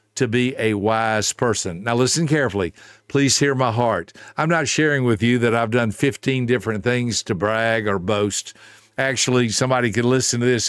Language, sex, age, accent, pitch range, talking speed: English, male, 60-79, American, 110-130 Hz, 185 wpm